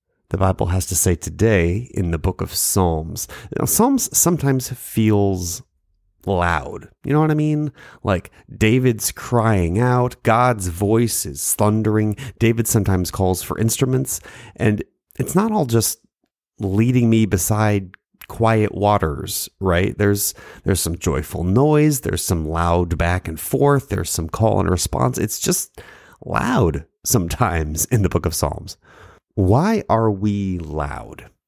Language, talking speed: English, 140 wpm